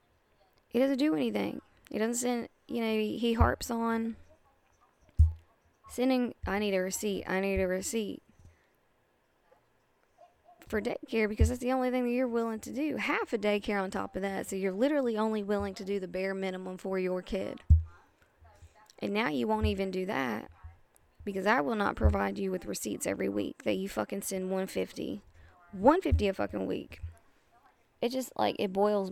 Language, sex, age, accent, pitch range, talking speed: English, female, 20-39, American, 190-250 Hz, 175 wpm